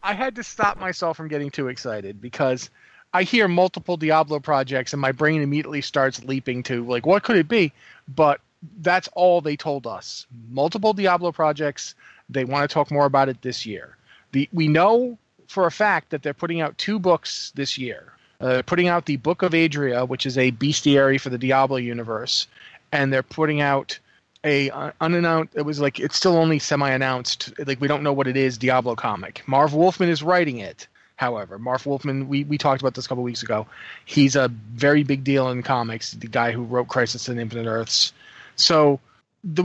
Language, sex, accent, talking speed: English, male, American, 200 wpm